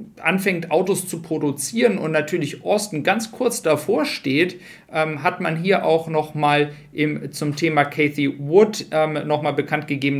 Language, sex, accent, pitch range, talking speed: German, male, German, 140-165 Hz, 155 wpm